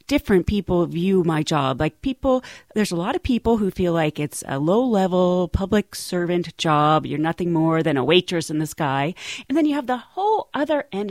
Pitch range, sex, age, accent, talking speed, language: 170-255 Hz, female, 40-59, American, 210 wpm, English